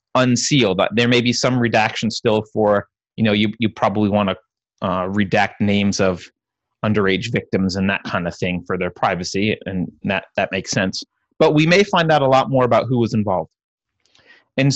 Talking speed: 190 wpm